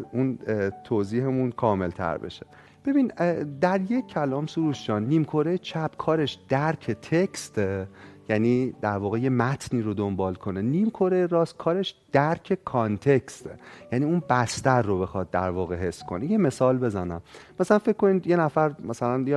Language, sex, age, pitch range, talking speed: Persian, male, 30-49, 105-165 Hz, 145 wpm